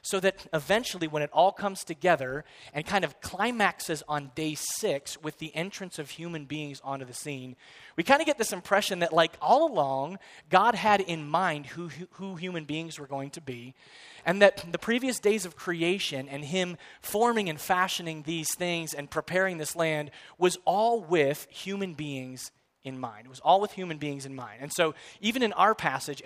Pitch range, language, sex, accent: 145-185 Hz, English, male, American